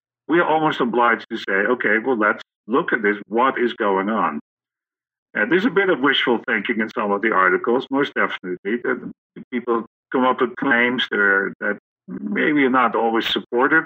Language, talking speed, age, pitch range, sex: English, 190 wpm, 50-69, 105-125 Hz, male